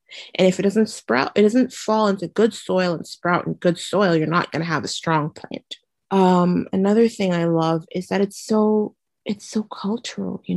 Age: 30-49